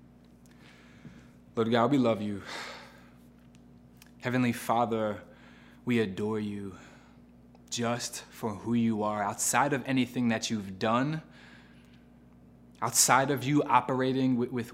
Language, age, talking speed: English, 20-39, 110 wpm